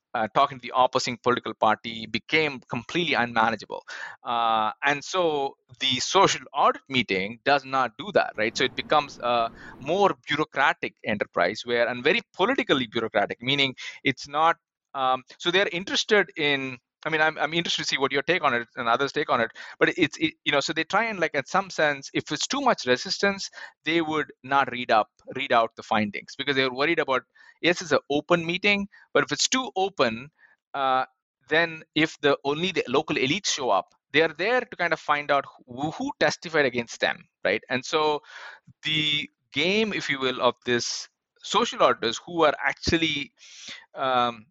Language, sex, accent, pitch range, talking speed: English, male, Indian, 125-160 Hz, 185 wpm